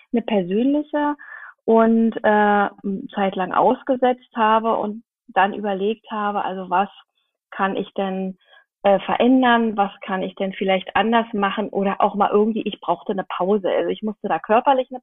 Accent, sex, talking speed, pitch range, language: German, female, 155 wpm, 195-230 Hz, German